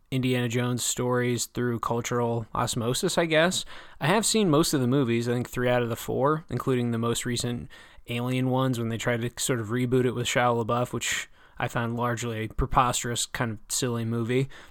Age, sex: 20-39, male